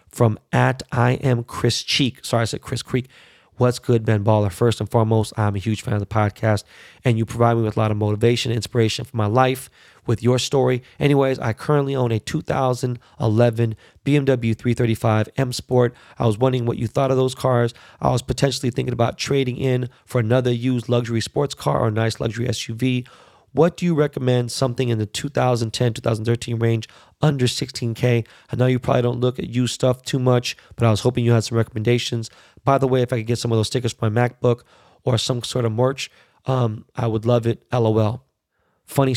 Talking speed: 205 wpm